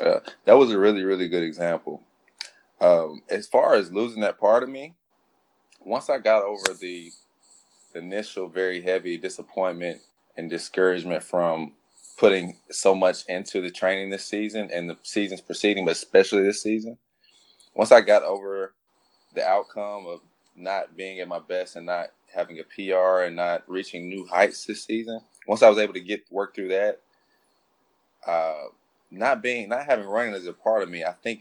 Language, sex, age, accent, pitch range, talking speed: English, male, 20-39, American, 85-110 Hz, 175 wpm